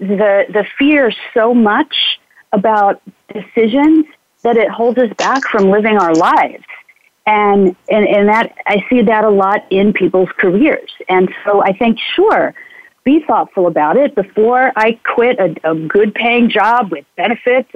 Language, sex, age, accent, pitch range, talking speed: English, female, 40-59, American, 205-255 Hz, 160 wpm